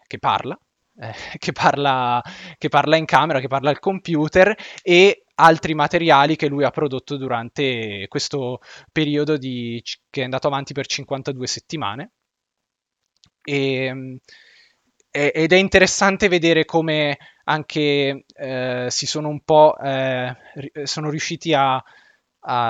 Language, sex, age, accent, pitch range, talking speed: Italian, male, 20-39, native, 125-150 Hz, 115 wpm